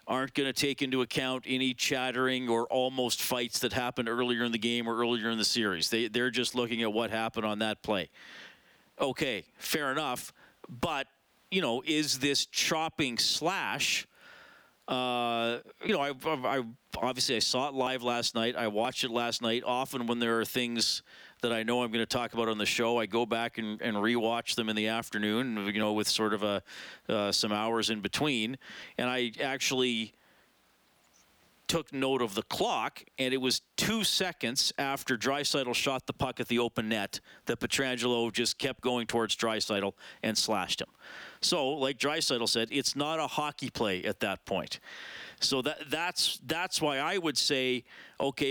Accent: American